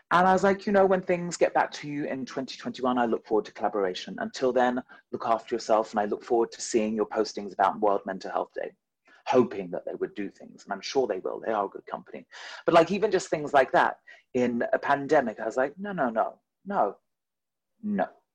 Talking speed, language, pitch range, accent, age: 230 wpm, English, 120-175 Hz, British, 30-49